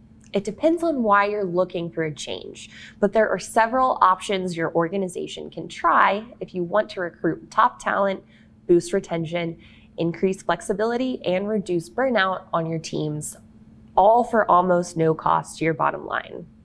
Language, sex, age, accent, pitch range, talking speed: English, female, 20-39, American, 170-225 Hz, 160 wpm